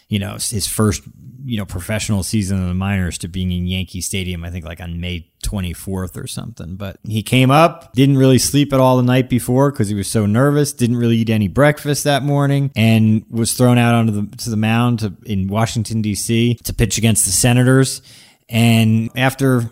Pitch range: 100-125 Hz